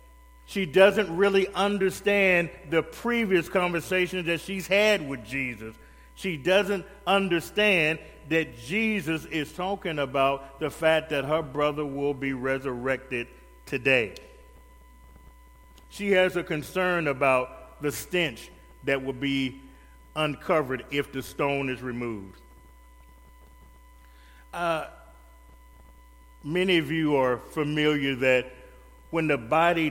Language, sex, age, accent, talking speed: English, male, 40-59, American, 110 wpm